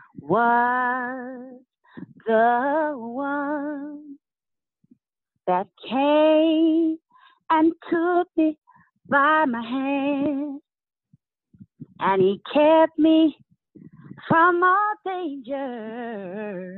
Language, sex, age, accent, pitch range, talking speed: English, female, 30-49, American, 230-330 Hz, 65 wpm